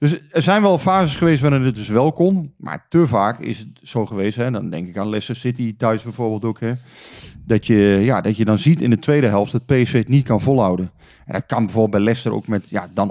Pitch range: 105-135 Hz